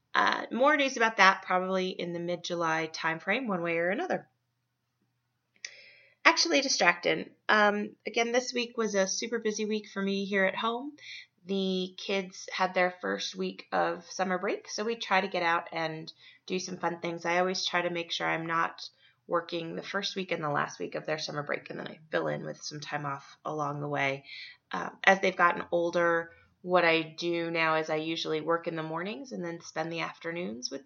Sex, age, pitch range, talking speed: female, 20-39, 160-195 Hz, 205 wpm